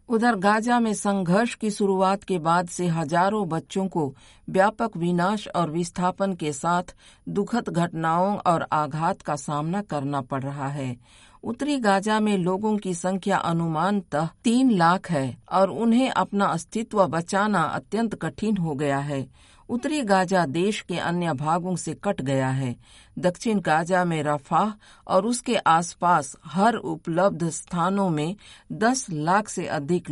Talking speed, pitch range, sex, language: 145 wpm, 155-200 Hz, female, Hindi